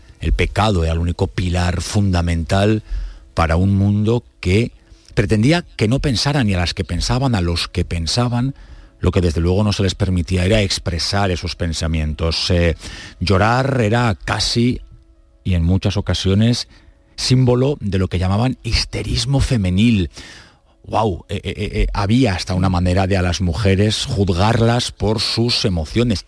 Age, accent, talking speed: 40-59, Spanish, 155 wpm